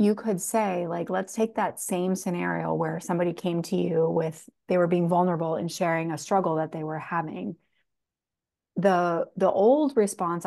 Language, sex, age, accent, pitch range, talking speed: English, female, 30-49, American, 170-195 Hz, 180 wpm